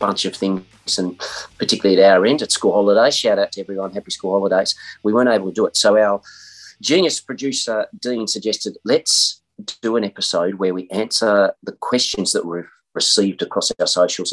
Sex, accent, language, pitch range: male, Australian, English, 90-115 Hz